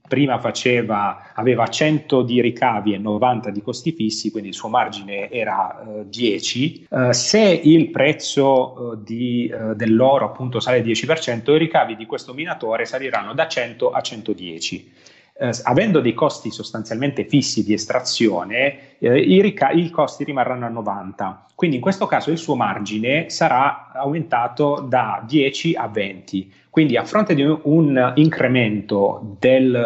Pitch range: 110-145 Hz